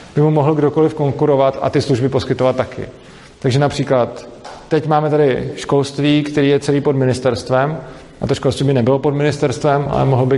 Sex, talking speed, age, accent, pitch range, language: male, 180 wpm, 40-59, native, 120-150 Hz, Czech